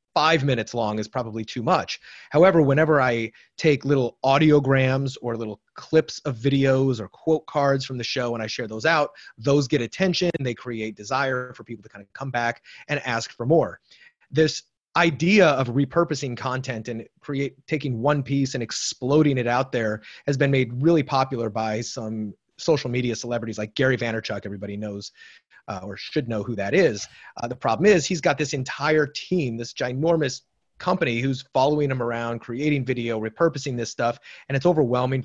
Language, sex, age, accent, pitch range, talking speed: English, male, 30-49, American, 115-150 Hz, 180 wpm